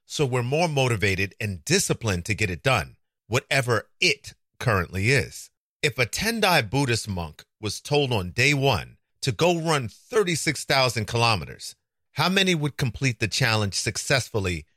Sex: male